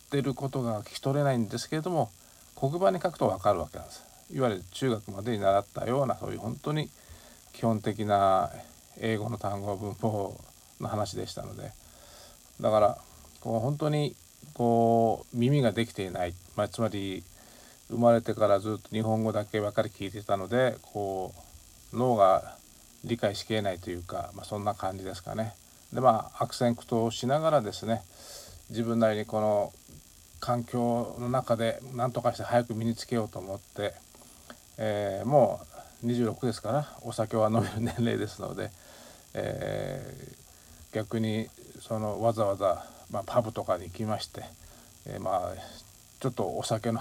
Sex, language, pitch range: male, Japanese, 100-120 Hz